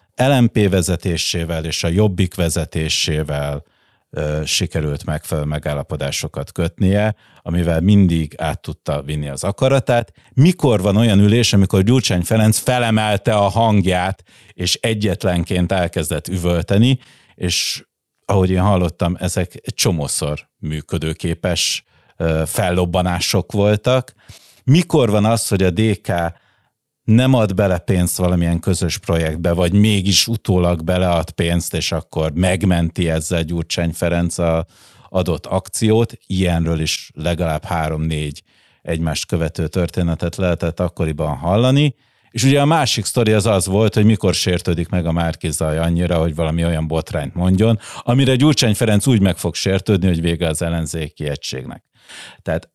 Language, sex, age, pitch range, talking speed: Hungarian, male, 50-69, 85-105 Hz, 125 wpm